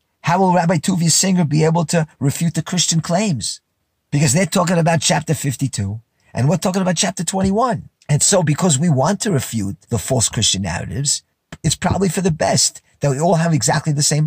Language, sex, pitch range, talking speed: English, male, 120-165 Hz, 200 wpm